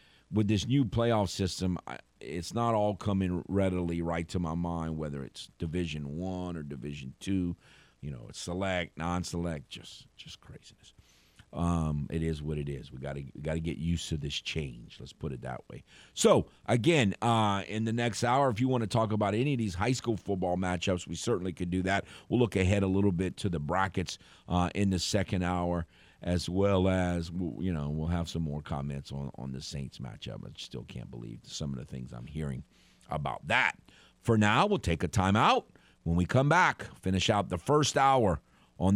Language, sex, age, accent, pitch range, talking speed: English, male, 50-69, American, 80-110 Hz, 200 wpm